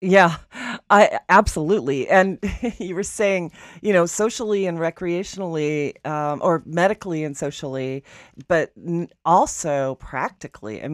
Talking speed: 115 wpm